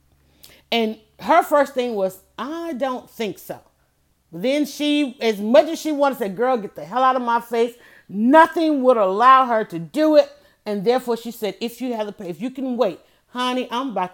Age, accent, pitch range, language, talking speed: 40-59, American, 195-255 Hz, English, 210 wpm